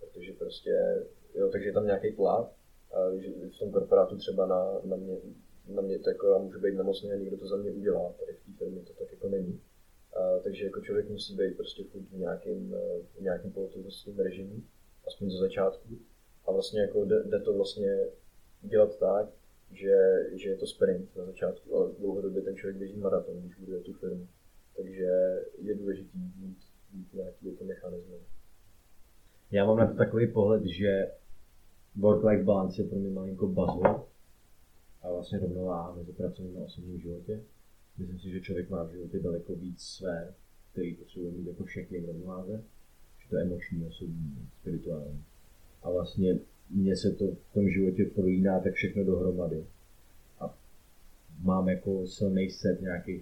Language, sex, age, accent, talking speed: Czech, male, 20-39, native, 160 wpm